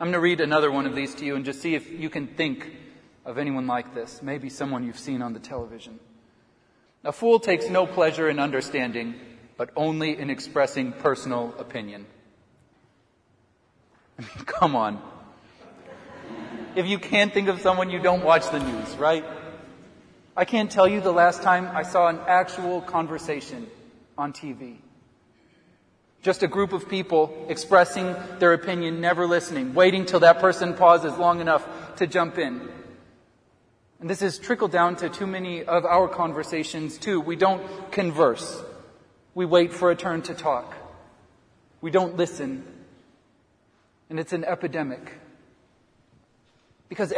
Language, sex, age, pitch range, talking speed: English, male, 40-59, 125-180 Hz, 155 wpm